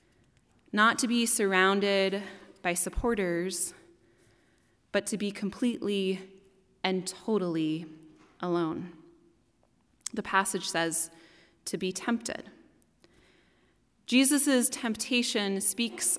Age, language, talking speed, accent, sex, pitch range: 20-39, English, 80 wpm, American, female, 185-225 Hz